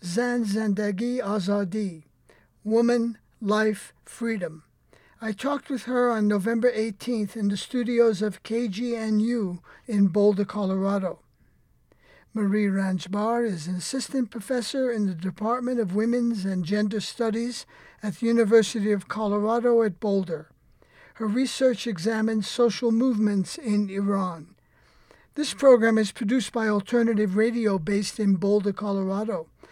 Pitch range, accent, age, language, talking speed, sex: 205-235 Hz, American, 50-69, English, 120 wpm, male